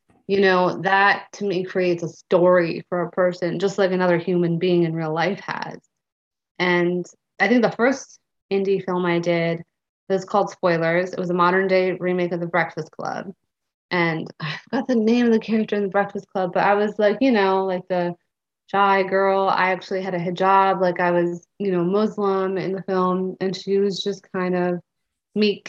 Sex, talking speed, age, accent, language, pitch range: female, 200 wpm, 20-39, American, English, 175-200 Hz